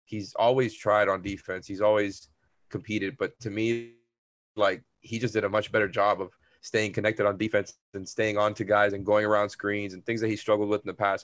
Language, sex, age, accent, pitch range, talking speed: English, male, 20-39, American, 105-120 Hz, 225 wpm